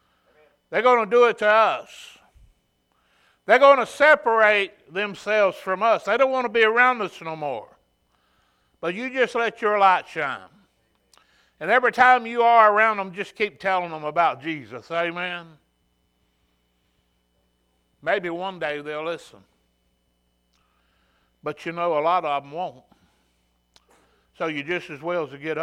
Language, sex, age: English, male, 60-79